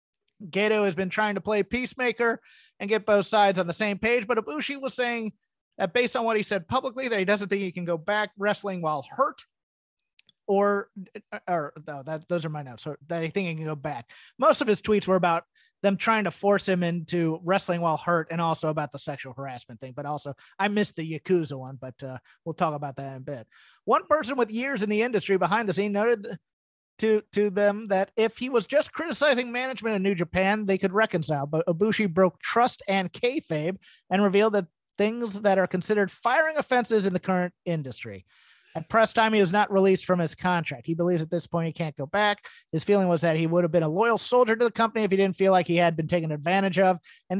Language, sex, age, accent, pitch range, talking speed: English, male, 30-49, American, 165-215 Hz, 230 wpm